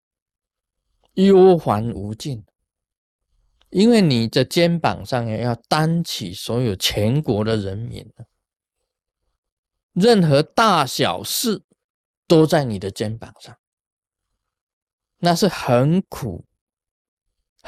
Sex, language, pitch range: male, Chinese, 110-155 Hz